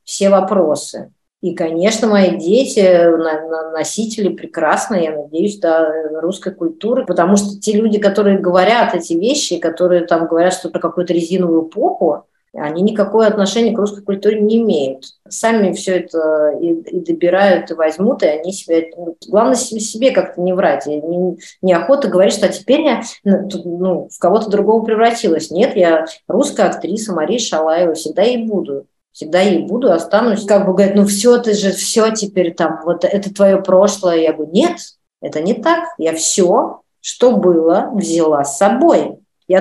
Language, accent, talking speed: Russian, native, 165 wpm